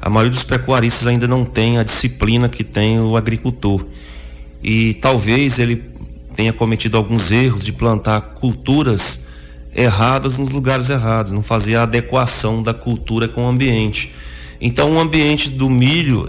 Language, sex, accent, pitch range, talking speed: Portuguese, male, Brazilian, 105-130 Hz, 150 wpm